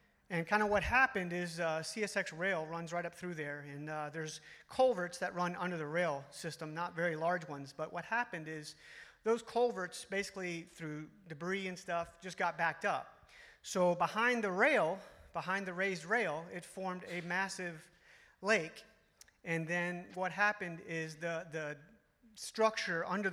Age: 40-59